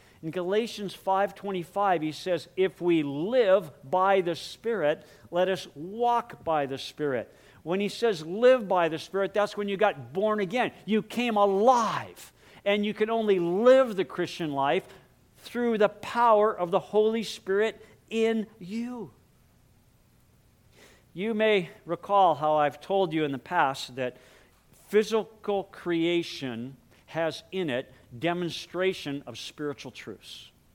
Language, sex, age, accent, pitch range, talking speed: English, male, 50-69, American, 150-200 Hz, 135 wpm